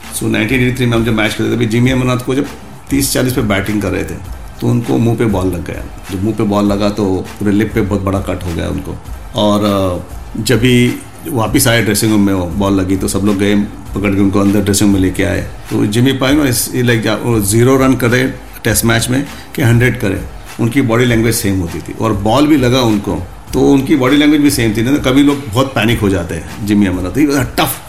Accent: native